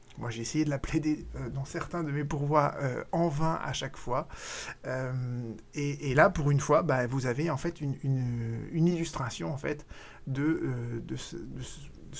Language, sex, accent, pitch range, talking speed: French, male, French, 130-165 Hz, 195 wpm